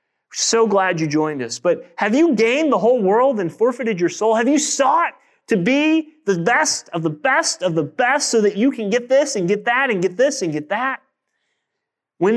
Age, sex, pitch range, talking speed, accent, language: 30-49, male, 160-235 Hz, 220 wpm, American, English